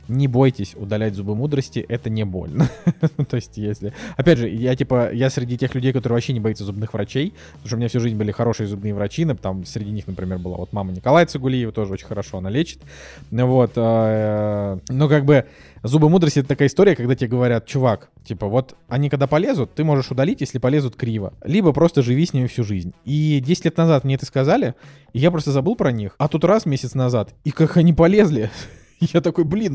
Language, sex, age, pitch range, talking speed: Russian, male, 20-39, 110-150 Hz, 210 wpm